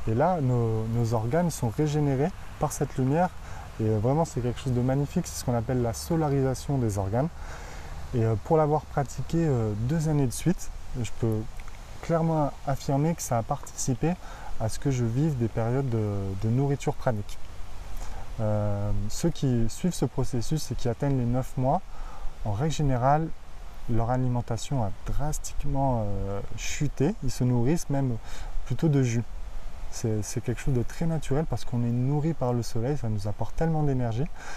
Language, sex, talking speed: French, male, 170 wpm